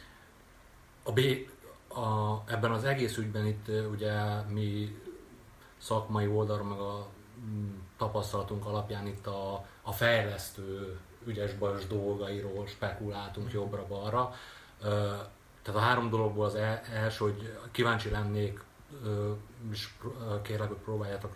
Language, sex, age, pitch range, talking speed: Hungarian, male, 30-49, 100-110 Hz, 95 wpm